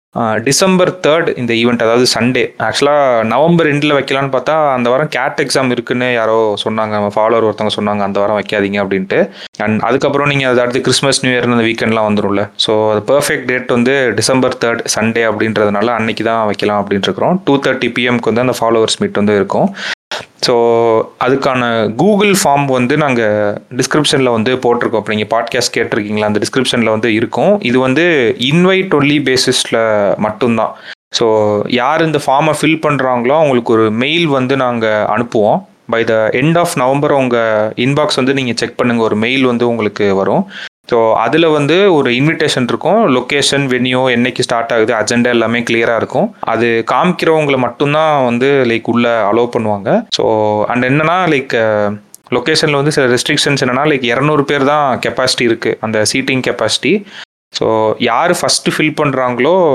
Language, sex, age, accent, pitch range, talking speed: Tamil, male, 30-49, native, 110-140 Hz, 150 wpm